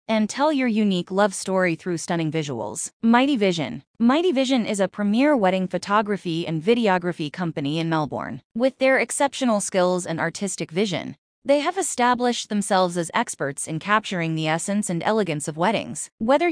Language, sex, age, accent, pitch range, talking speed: English, female, 20-39, American, 165-220 Hz, 165 wpm